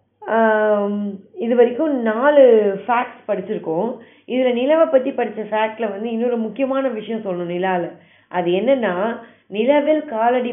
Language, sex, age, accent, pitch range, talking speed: Tamil, female, 20-39, native, 195-240 Hz, 115 wpm